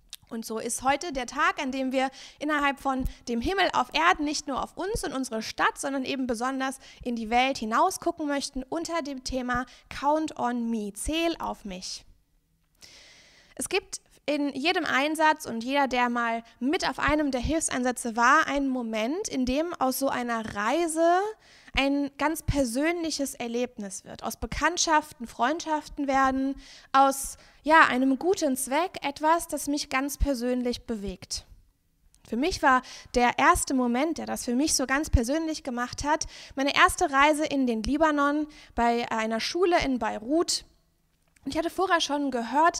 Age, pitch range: 20-39, 250-305 Hz